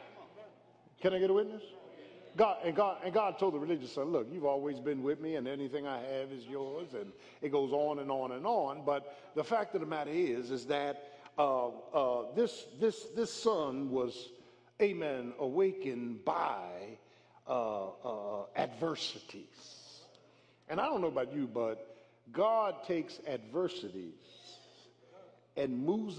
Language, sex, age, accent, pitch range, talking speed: English, male, 50-69, American, 135-195 Hz, 155 wpm